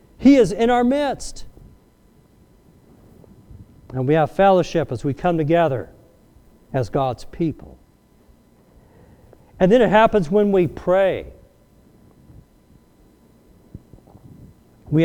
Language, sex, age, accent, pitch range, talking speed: English, male, 50-69, American, 145-210 Hz, 95 wpm